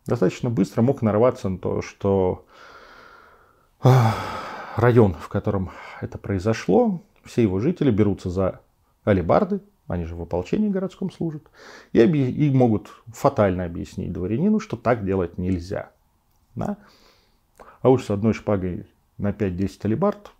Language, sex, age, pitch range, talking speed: Russian, male, 40-59, 100-140 Hz, 120 wpm